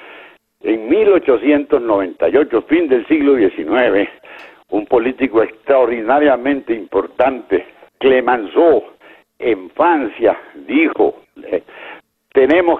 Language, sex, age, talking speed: Spanish, male, 70-89, 75 wpm